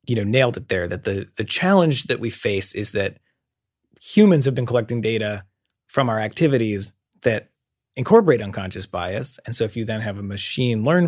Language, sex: English, male